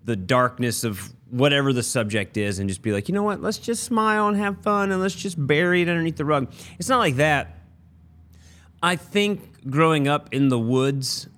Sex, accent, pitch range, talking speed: male, American, 105-135 Hz, 205 wpm